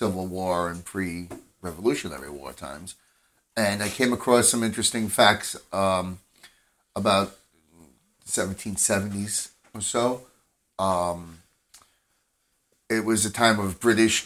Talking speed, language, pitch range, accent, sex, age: 110 wpm, English, 90-110 Hz, American, male, 30-49